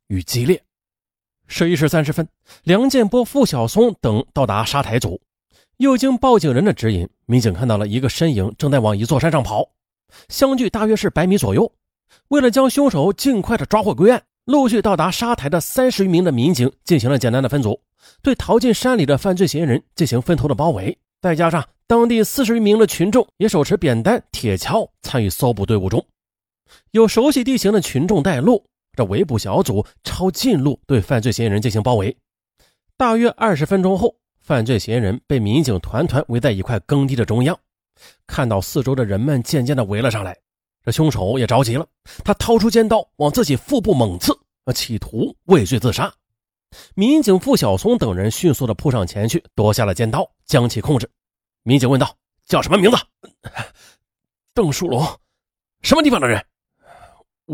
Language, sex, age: Chinese, male, 30-49